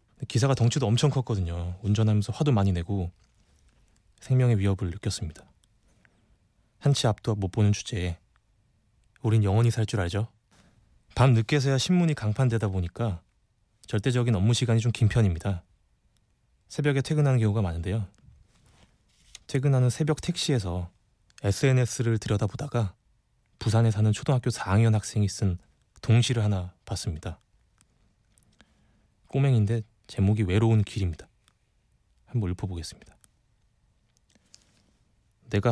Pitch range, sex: 100-115 Hz, male